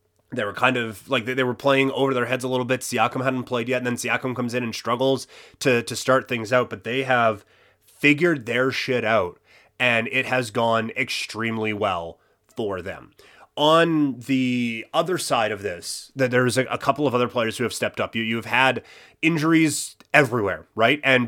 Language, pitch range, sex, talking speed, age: English, 110-135 Hz, male, 195 wpm, 30-49